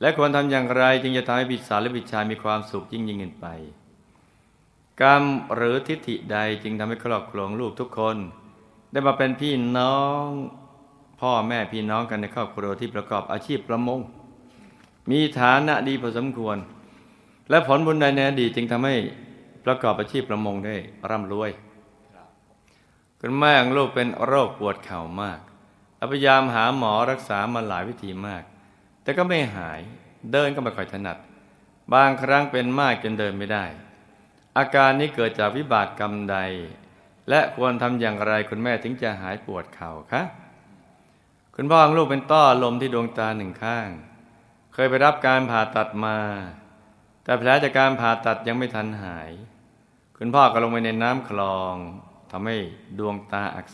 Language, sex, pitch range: Thai, male, 105-130 Hz